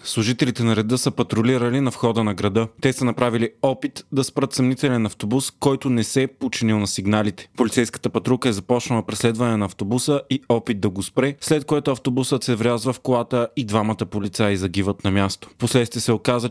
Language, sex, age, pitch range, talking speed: Bulgarian, male, 30-49, 110-130 Hz, 190 wpm